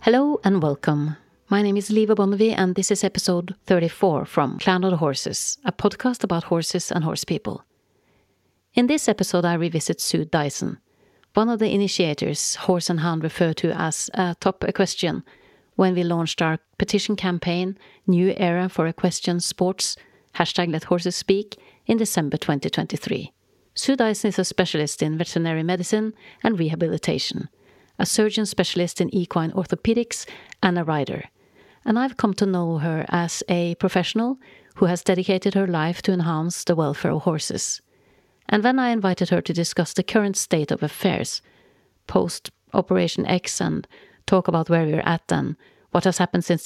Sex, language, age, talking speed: female, English, 40-59, 165 wpm